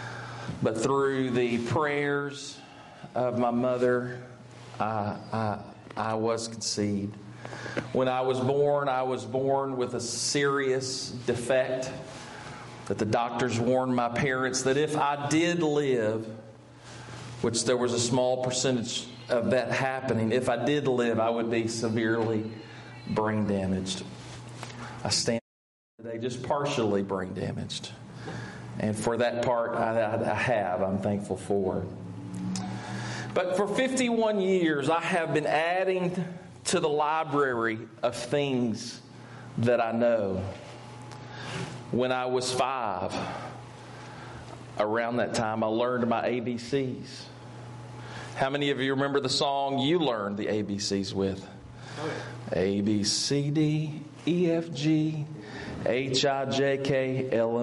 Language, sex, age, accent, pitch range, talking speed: English, male, 40-59, American, 110-135 Hz, 125 wpm